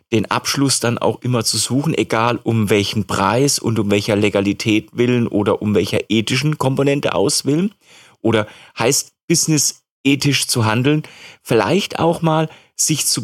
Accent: German